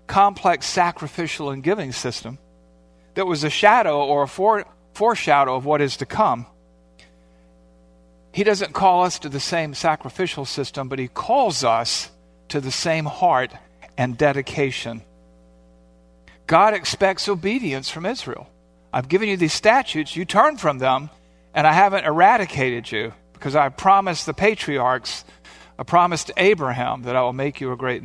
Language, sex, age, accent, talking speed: English, male, 50-69, American, 150 wpm